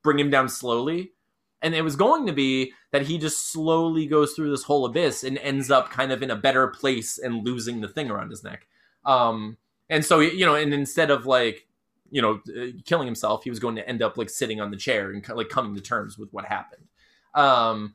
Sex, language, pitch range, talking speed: male, English, 130-170 Hz, 230 wpm